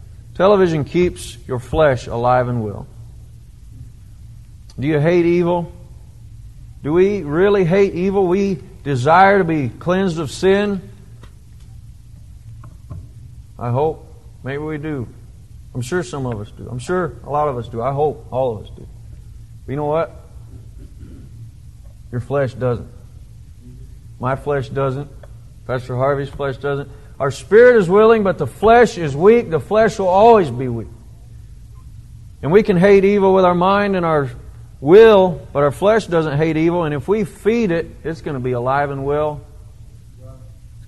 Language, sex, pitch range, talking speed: English, male, 115-170 Hz, 155 wpm